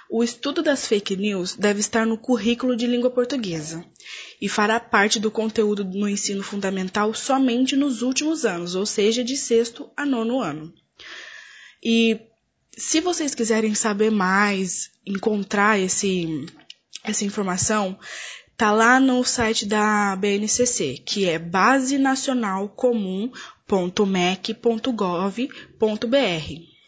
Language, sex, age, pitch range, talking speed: Portuguese, female, 10-29, 200-245 Hz, 110 wpm